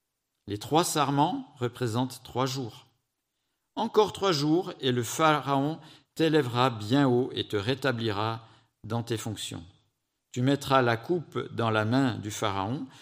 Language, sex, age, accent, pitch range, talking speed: French, male, 50-69, French, 115-150 Hz, 140 wpm